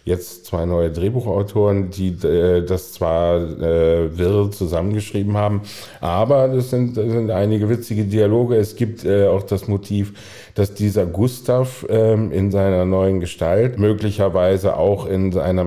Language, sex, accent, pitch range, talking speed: German, male, German, 90-110 Hz, 145 wpm